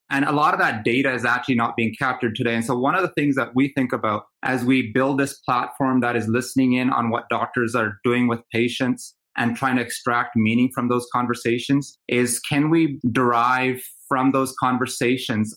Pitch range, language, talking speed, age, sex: 115-135 Hz, English, 205 wpm, 30-49, male